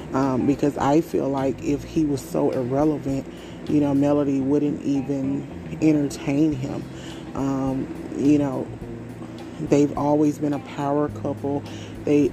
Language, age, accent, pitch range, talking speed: English, 30-49, American, 135-145 Hz, 130 wpm